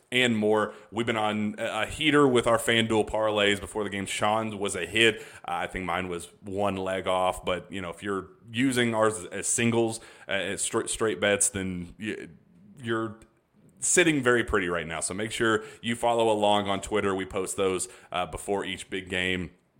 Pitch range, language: 90-115 Hz, English